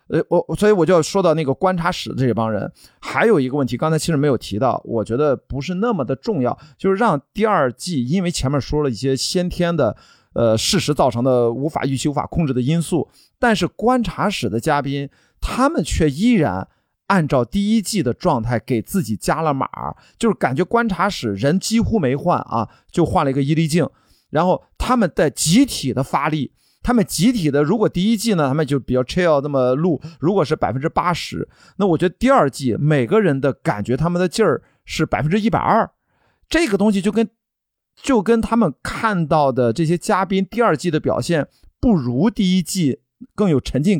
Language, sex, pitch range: Chinese, male, 135-200 Hz